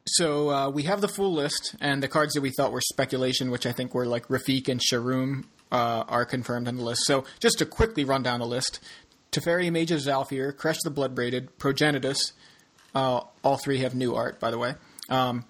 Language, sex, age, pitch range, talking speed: English, male, 30-49, 130-155 Hz, 215 wpm